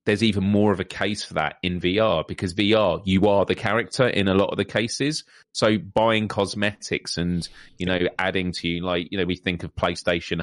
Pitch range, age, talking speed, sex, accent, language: 85-100 Hz, 30-49, 220 wpm, male, British, English